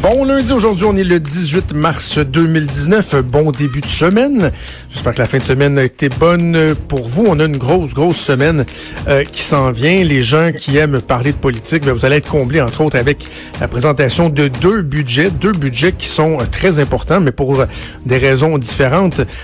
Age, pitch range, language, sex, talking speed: 60-79, 130-165 Hz, French, male, 200 wpm